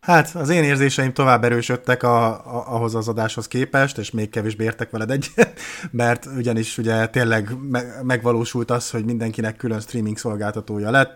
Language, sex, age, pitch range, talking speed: Hungarian, male, 30-49, 105-125 Hz, 150 wpm